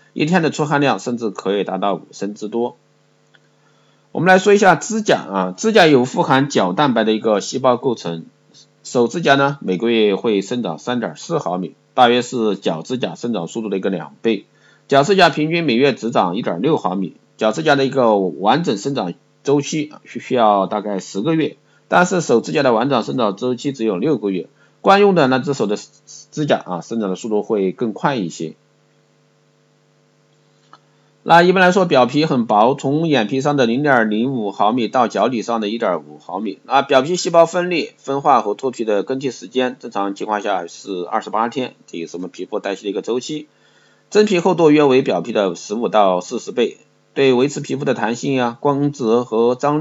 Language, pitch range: Chinese, 110-150 Hz